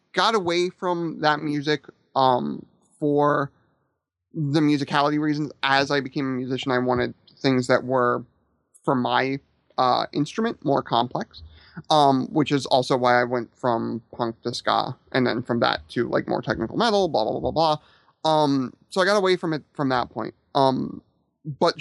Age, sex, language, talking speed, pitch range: 30-49, male, English, 175 wpm, 125-160 Hz